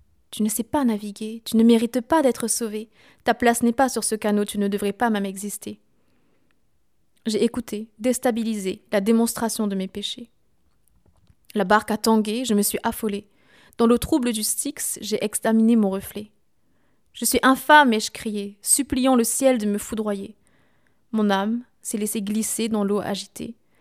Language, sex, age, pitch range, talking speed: French, female, 20-39, 210-240 Hz, 180 wpm